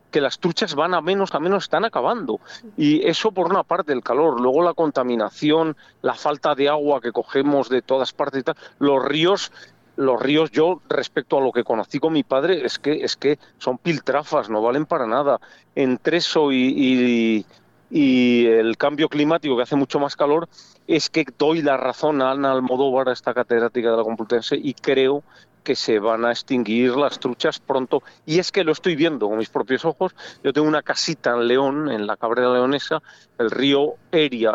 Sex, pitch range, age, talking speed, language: male, 125-165 Hz, 40-59, 195 wpm, Spanish